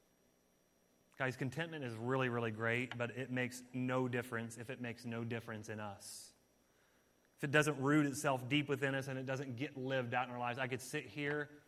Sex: male